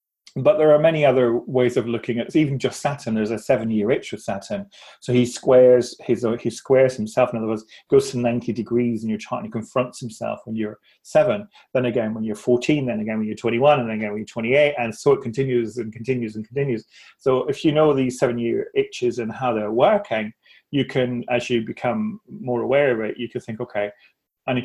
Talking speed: 225 wpm